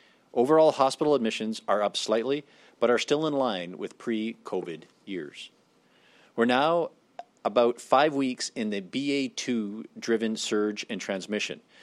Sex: male